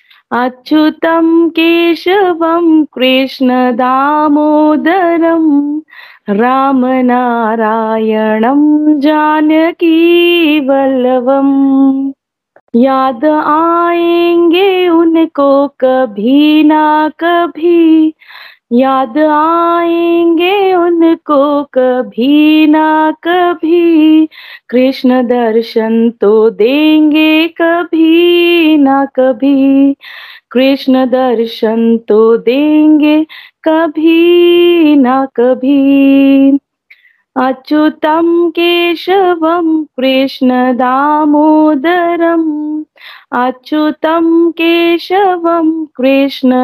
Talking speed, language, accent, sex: 55 wpm, Hindi, native, female